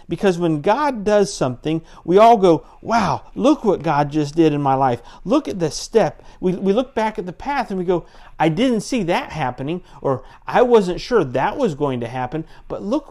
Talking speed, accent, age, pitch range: 215 wpm, American, 50-69, 135-180 Hz